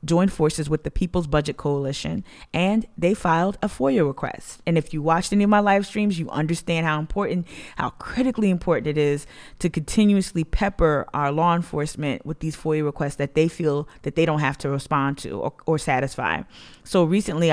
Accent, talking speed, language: American, 190 wpm, English